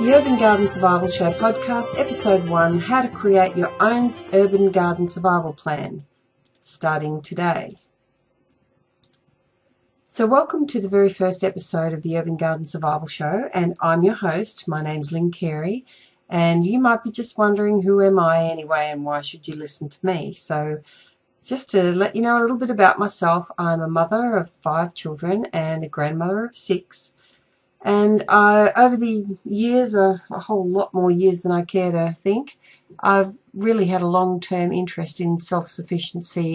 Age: 40-59